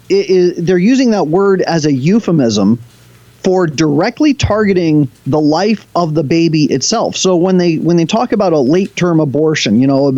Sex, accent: male, American